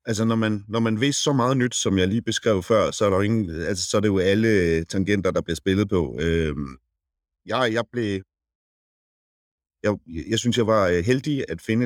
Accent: native